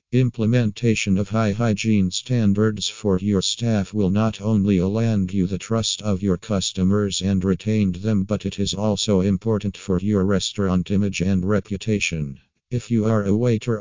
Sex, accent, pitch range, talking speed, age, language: male, American, 95-110 Hz, 160 wpm, 50-69, Italian